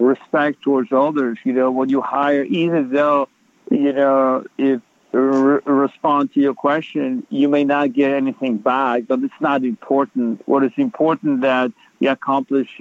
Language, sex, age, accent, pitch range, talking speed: English, male, 60-79, American, 125-140 Hz, 165 wpm